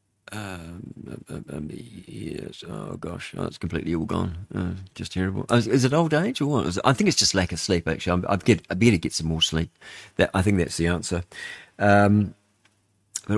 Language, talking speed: English, 205 wpm